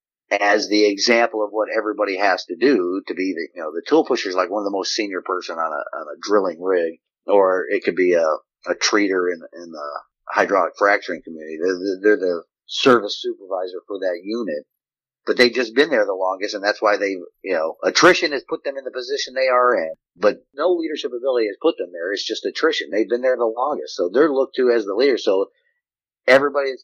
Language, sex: English, male